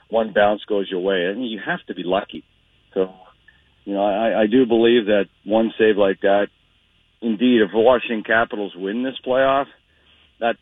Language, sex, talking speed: English, male, 190 wpm